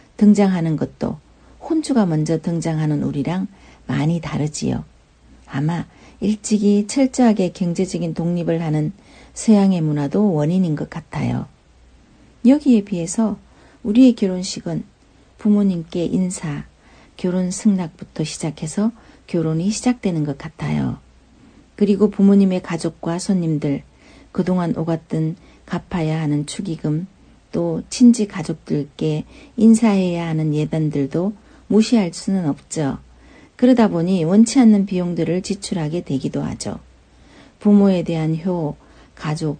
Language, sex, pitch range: Korean, female, 160-210 Hz